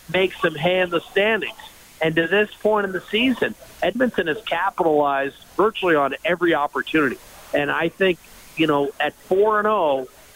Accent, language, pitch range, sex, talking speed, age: American, English, 160-200 Hz, male, 155 wpm, 50-69